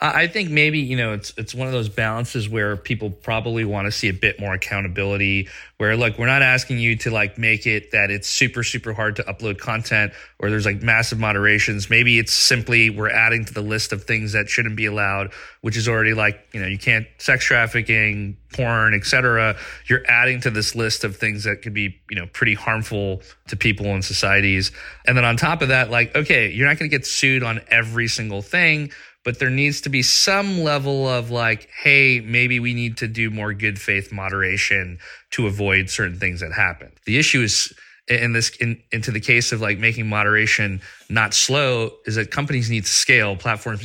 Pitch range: 105-125 Hz